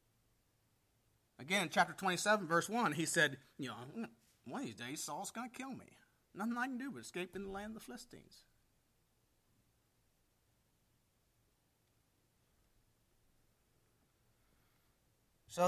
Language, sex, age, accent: English, male, 40-59, American